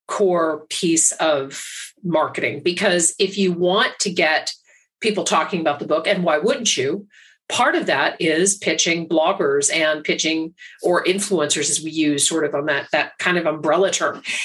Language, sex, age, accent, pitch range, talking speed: English, female, 40-59, American, 155-195 Hz, 170 wpm